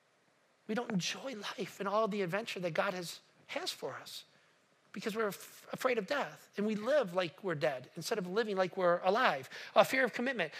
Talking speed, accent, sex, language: 210 wpm, American, male, English